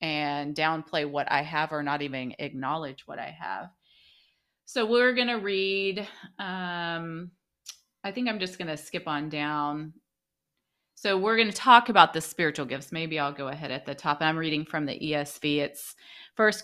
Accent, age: American, 30-49